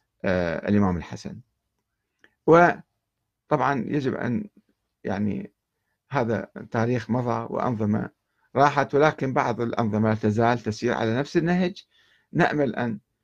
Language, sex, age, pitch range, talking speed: Arabic, male, 50-69, 110-175 Hz, 95 wpm